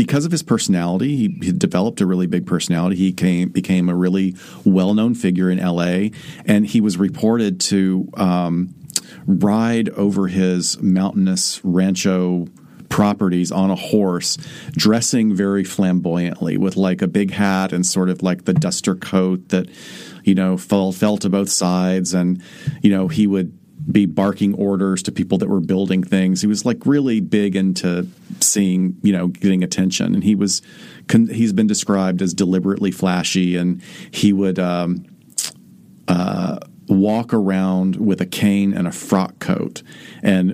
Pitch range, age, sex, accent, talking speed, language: 90-100 Hz, 40-59, male, American, 160 wpm, English